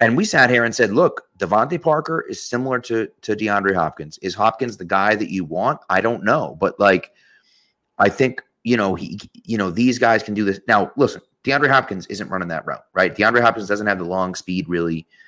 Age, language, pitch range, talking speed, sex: 30-49, English, 90-115 Hz, 220 wpm, male